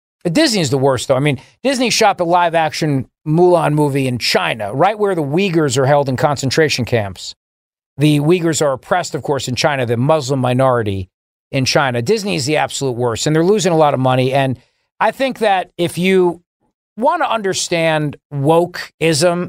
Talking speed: 180 wpm